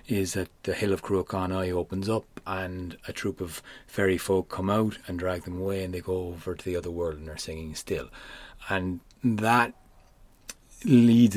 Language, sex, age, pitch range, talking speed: English, male, 30-49, 95-120 Hz, 185 wpm